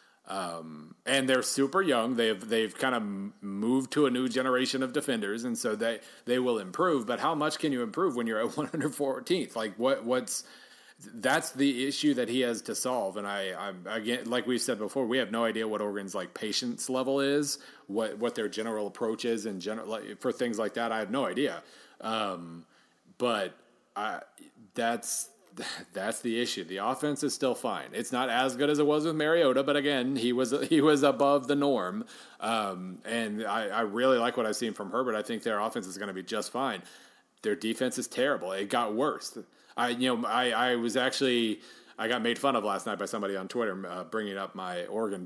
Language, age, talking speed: English, 30-49, 210 wpm